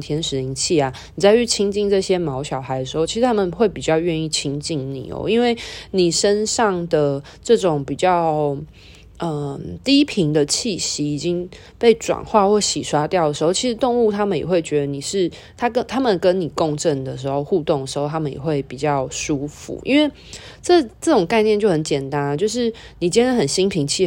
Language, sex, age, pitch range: Chinese, female, 20-39, 140-195 Hz